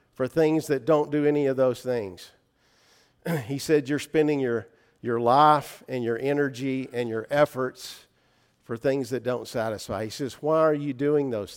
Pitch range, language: 125-150 Hz, English